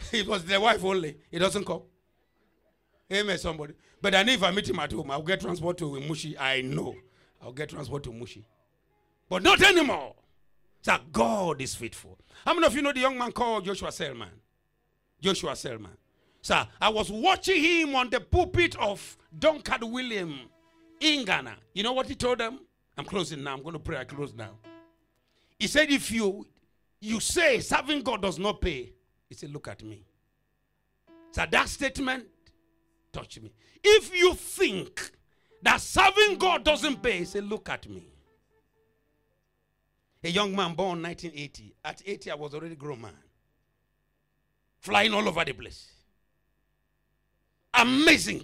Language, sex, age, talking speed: English, male, 50-69, 160 wpm